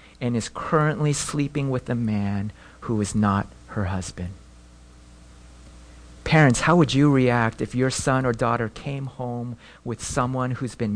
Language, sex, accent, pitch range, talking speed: English, male, American, 105-170 Hz, 155 wpm